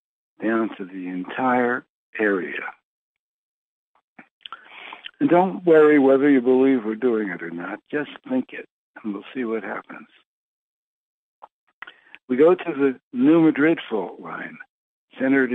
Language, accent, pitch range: English, American, 110-135 Hz